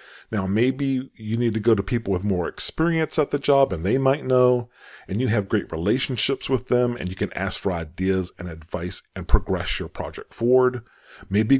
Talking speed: 200 wpm